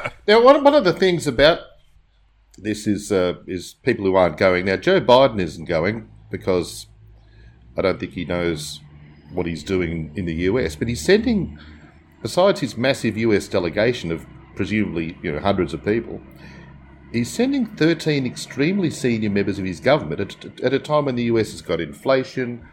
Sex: male